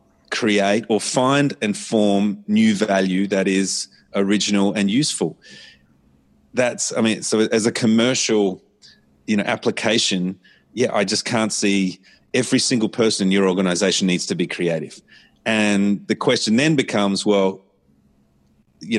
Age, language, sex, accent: 30-49, English, male, Australian